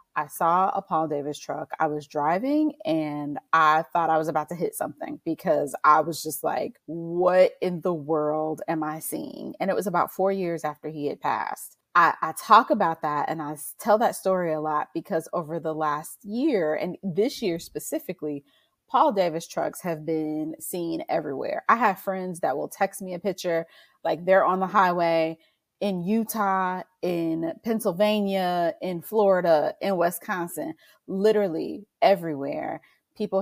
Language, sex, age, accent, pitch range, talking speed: English, female, 30-49, American, 155-195 Hz, 165 wpm